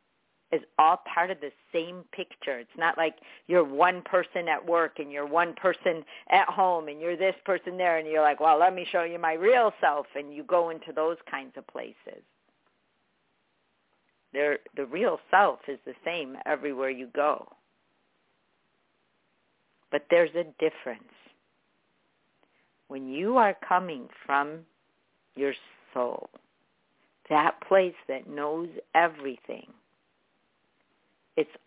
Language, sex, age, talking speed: English, female, 50-69, 135 wpm